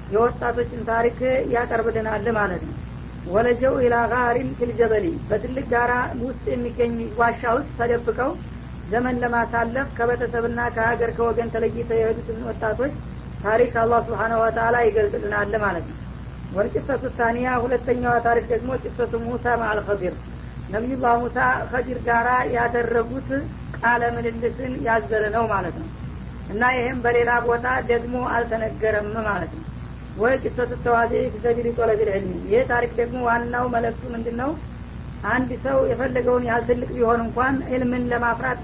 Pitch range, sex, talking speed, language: 230-245 Hz, female, 125 wpm, Amharic